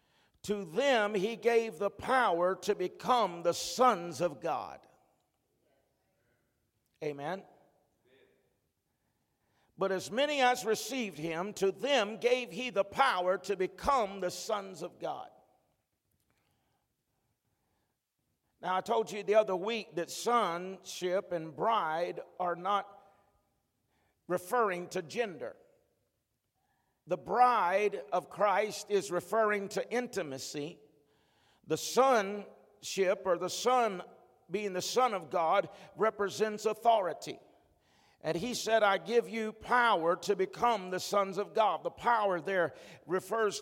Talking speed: 115 wpm